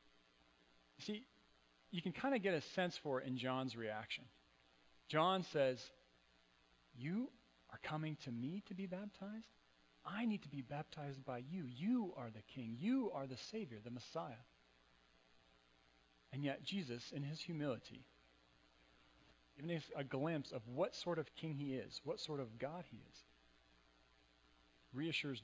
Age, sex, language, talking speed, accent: 40-59, male, English, 150 wpm, American